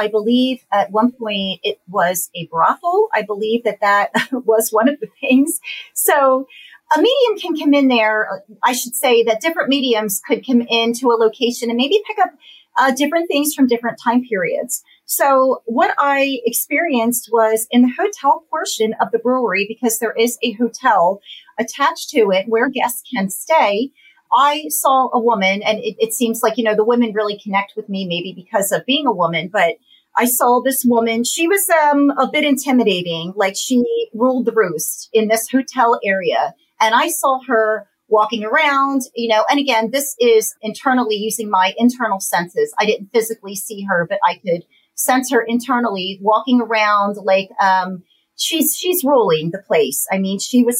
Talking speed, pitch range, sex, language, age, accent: 185 wpm, 215-270 Hz, female, English, 40-59, American